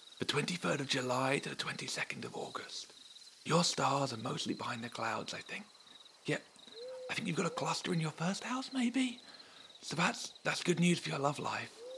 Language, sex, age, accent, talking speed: English, male, 40-59, British, 195 wpm